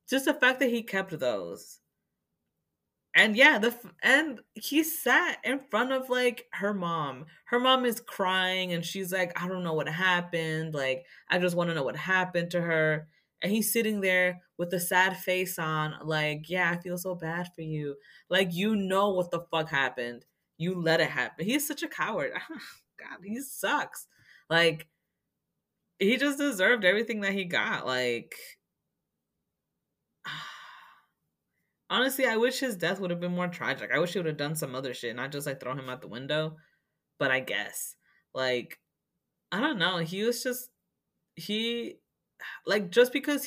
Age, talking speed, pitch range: 20-39, 175 wpm, 160-215 Hz